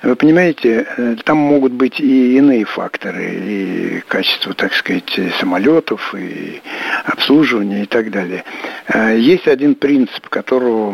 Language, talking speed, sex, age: Russian, 120 wpm, male, 60-79